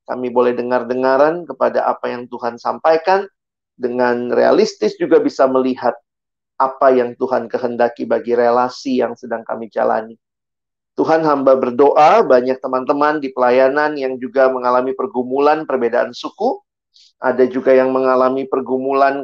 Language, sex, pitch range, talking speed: Indonesian, male, 125-150 Hz, 130 wpm